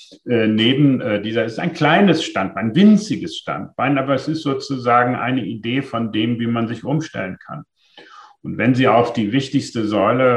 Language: German